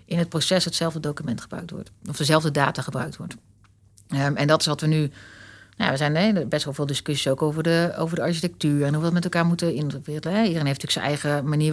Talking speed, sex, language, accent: 220 wpm, female, Dutch, Dutch